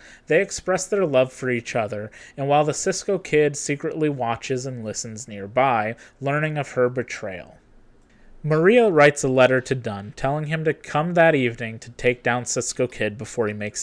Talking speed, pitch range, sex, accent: 180 wpm, 120-150 Hz, male, American